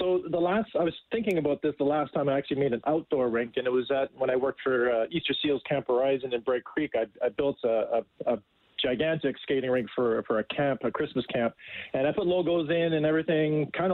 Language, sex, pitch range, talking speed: English, male, 135-165 Hz, 245 wpm